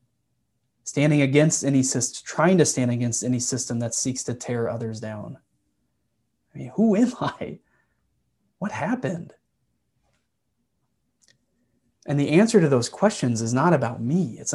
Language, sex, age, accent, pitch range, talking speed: English, male, 30-49, American, 125-150 Hz, 140 wpm